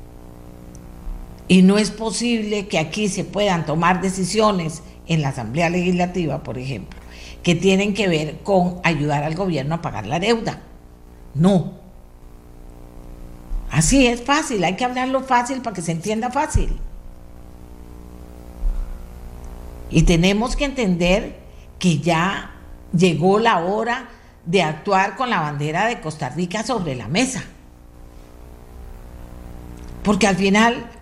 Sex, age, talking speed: female, 50-69, 125 wpm